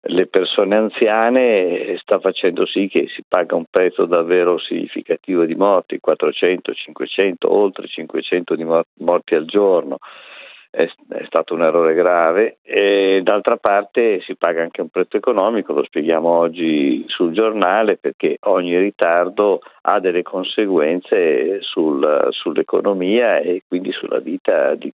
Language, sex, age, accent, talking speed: Italian, male, 50-69, native, 130 wpm